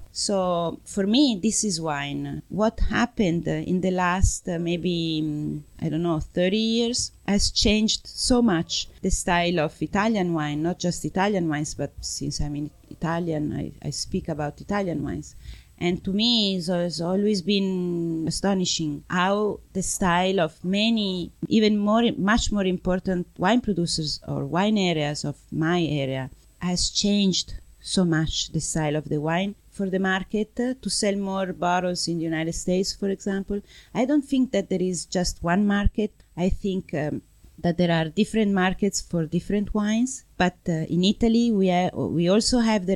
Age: 30-49